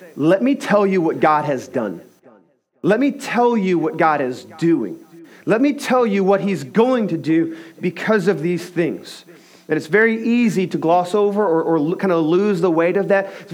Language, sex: English, male